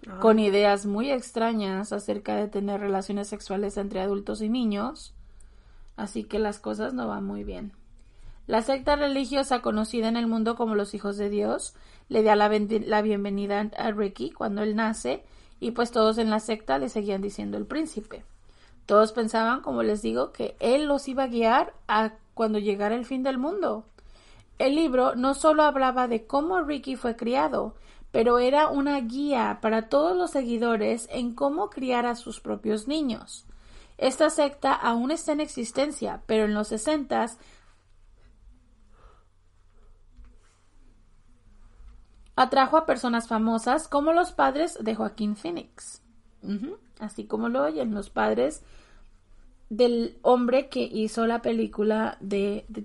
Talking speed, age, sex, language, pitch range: 150 wpm, 30-49, female, Spanish, 200-260 Hz